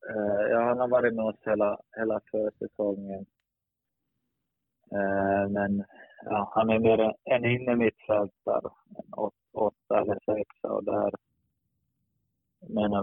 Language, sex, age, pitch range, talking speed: Swedish, male, 20-39, 100-110 Hz, 130 wpm